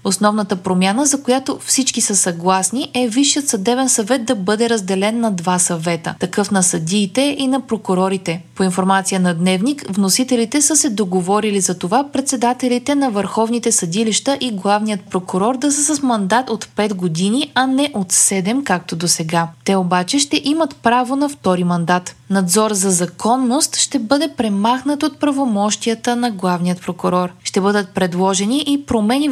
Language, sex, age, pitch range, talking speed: Bulgarian, female, 20-39, 190-260 Hz, 160 wpm